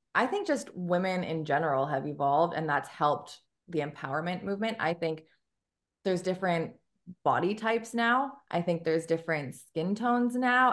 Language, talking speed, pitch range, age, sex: English, 155 wpm, 155-190 Hz, 20-39, female